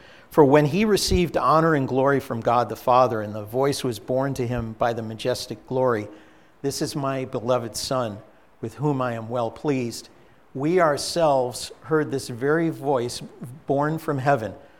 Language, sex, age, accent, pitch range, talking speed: English, male, 50-69, American, 115-140 Hz, 170 wpm